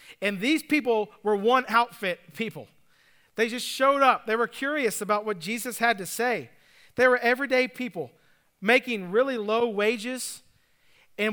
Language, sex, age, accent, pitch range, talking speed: English, male, 40-59, American, 200-250 Hz, 150 wpm